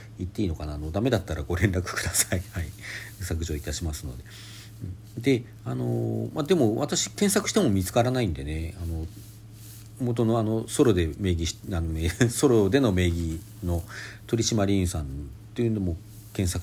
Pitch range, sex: 85-110 Hz, male